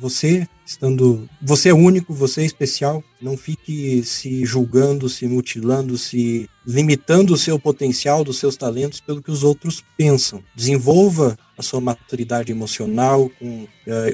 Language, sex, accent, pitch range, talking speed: Portuguese, male, Brazilian, 125-145 Hz, 145 wpm